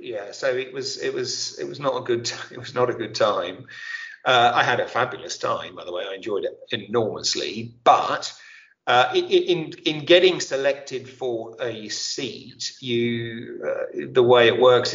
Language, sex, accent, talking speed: English, male, British, 180 wpm